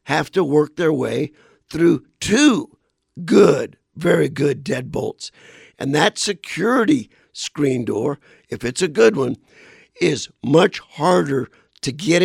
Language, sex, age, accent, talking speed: English, male, 50-69, American, 125 wpm